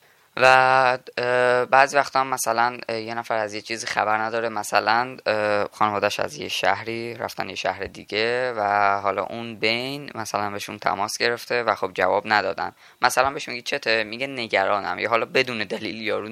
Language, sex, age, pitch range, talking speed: English, female, 10-29, 105-130 Hz, 160 wpm